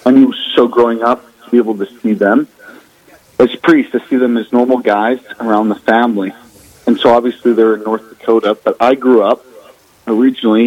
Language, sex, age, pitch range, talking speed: English, male, 40-59, 110-130 Hz, 190 wpm